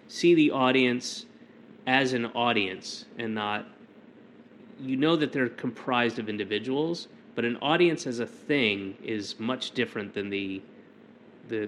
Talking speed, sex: 125 wpm, male